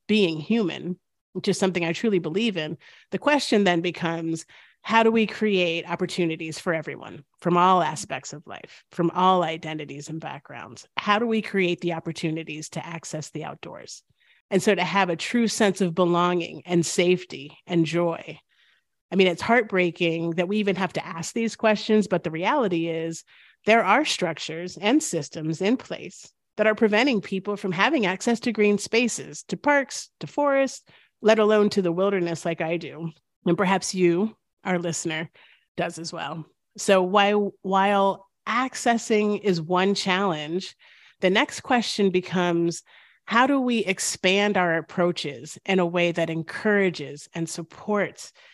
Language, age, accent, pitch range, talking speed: English, 40-59, American, 165-210 Hz, 160 wpm